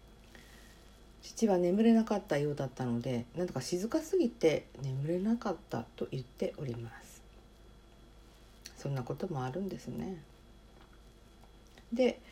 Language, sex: Japanese, female